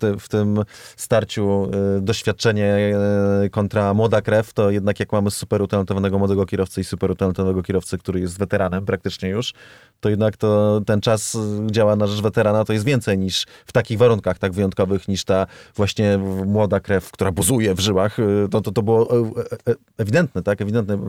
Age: 30-49